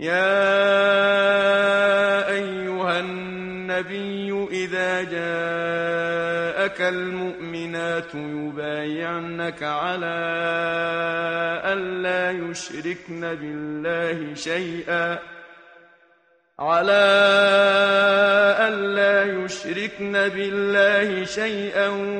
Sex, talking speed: male, 45 wpm